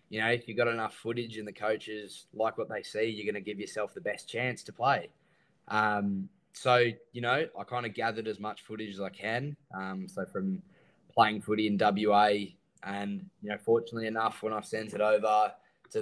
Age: 10-29